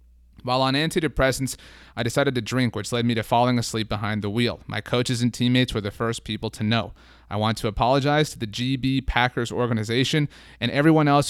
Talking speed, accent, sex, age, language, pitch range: 200 wpm, American, male, 30-49, English, 110-140 Hz